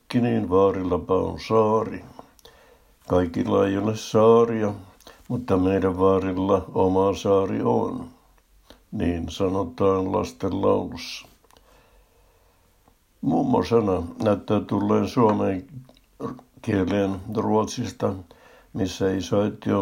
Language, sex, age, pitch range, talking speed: Finnish, male, 60-79, 95-105 Hz, 80 wpm